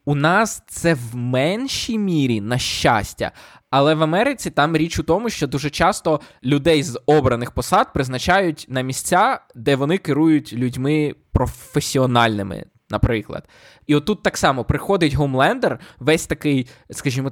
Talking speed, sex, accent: 140 wpm, male, native